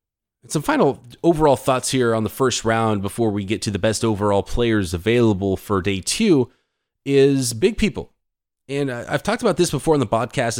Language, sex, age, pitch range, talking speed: English, male, 20-39, 100-120 Hz, 190 wpm